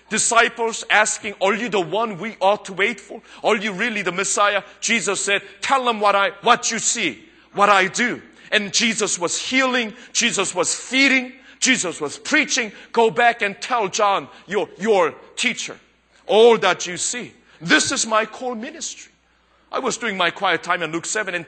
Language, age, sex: Korean, 40-59, male